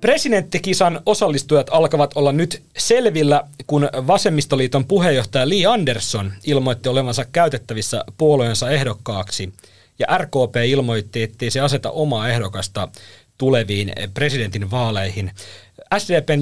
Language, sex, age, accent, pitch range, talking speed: Finnish, male, 30-49, native, 110-150 Hz, 100 wpm